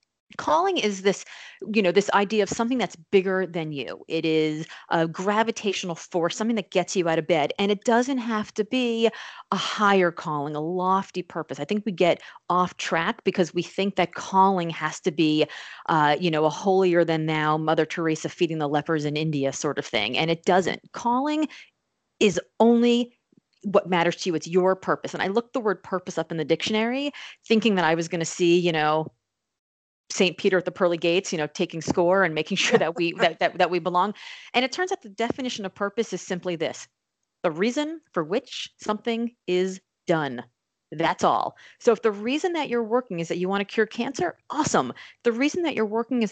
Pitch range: 170-225 Hz